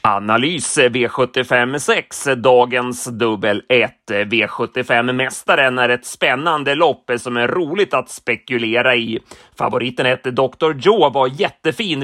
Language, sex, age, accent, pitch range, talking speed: Swedish, male, 30-49, native, 125-145 Hz, 110 wpm